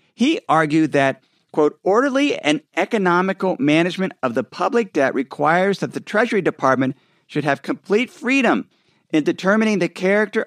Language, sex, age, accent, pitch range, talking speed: English, male, 50-69, American, 145-205 Hz, 145 wpm